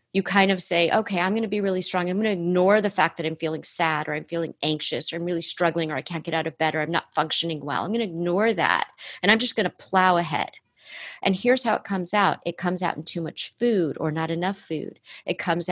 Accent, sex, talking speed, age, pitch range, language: American, female, 275 wpm, 40-59, 160-190 Hz, English